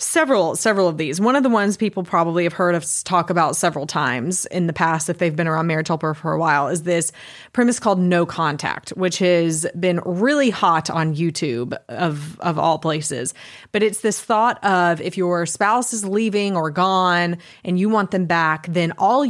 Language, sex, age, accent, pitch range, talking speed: English, female, 30-49, American, 170-210 Hz, 200 wpm